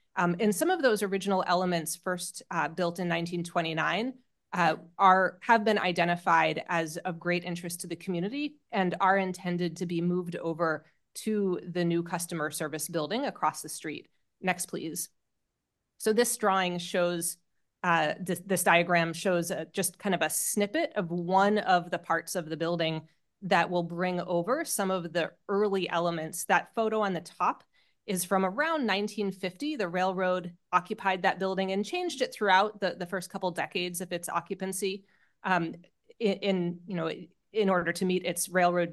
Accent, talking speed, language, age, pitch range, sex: American, 170 wpm, English, 30-49, 170-195 Hz, female